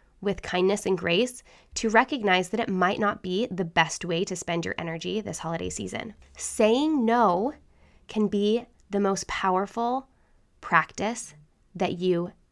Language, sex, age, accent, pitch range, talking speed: English, female, 10-29, American, 185-255 Hz, 150 wpm